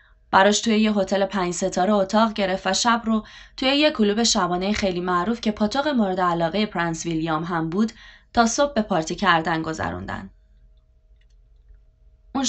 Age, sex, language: 20-39, female, Persian